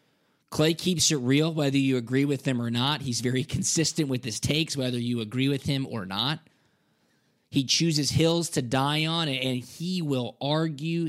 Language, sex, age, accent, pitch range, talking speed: English, male, 20-39, American, 125-155 Hz, 185 wpm